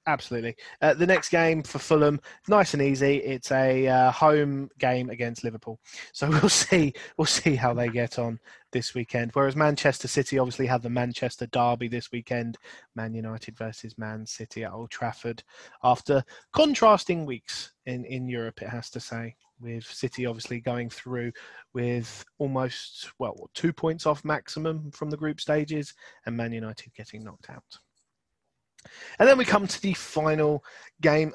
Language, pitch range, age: English, 120-155 Hz, 20-39